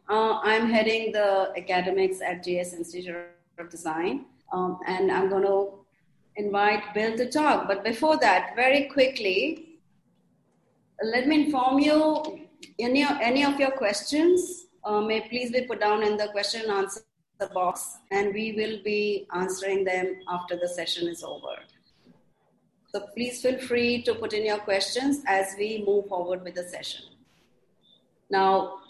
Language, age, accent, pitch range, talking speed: English, 30-49, Indian, 190-240 Hz, 145 wpm